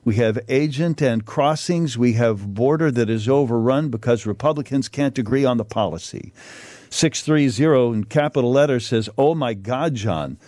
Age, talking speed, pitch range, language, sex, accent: 50-69, 155 wpm, 115-145 Hz, English, male, American